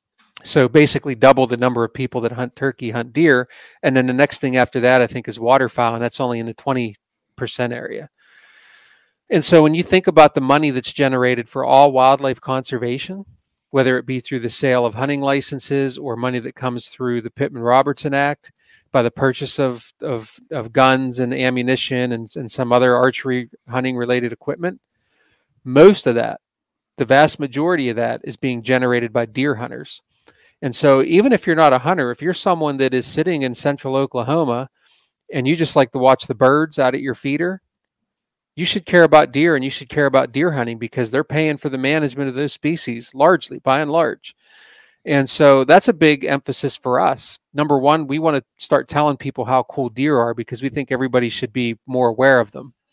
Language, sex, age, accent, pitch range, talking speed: English, male, 40-59, American, 125-145 Hz, 200 wpm